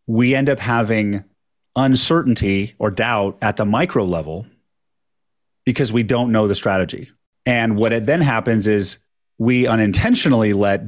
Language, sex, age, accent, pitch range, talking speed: English, male, 30-49, American, 105-135 Hz, 140 wpm